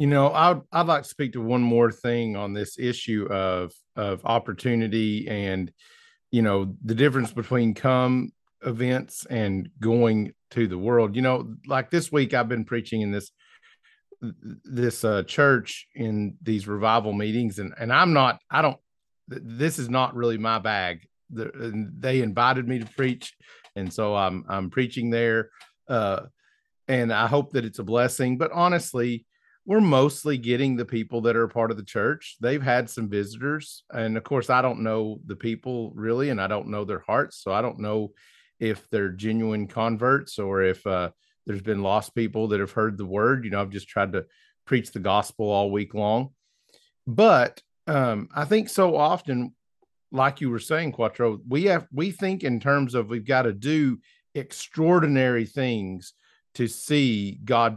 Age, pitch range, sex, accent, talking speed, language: 50-69, 110-135 Hz, male, American, 175 wpm, English